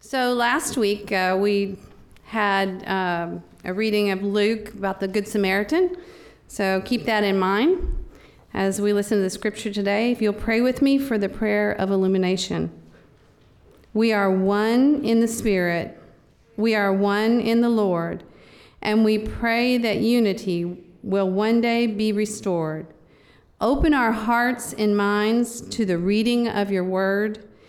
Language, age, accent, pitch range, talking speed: English, 40-59, American, 185-230 Hz, 150 wpm